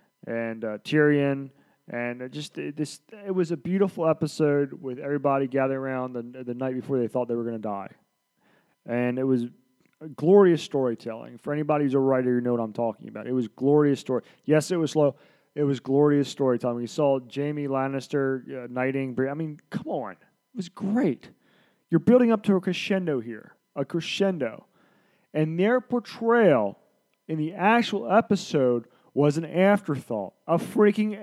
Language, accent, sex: English, American, male